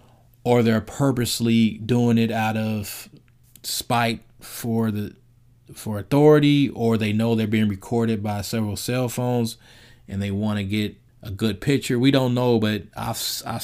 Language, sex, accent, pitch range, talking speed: English, male, American, 110-120 Hz, 155 wpm